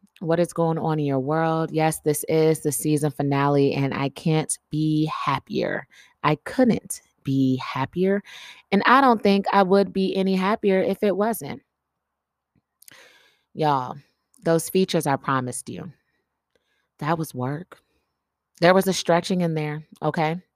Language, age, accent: English, 20-39, American